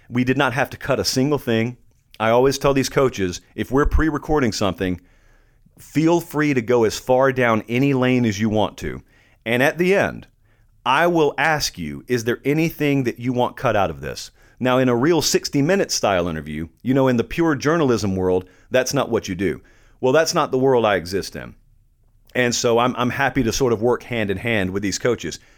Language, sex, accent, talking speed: English, male, American, 210 wpm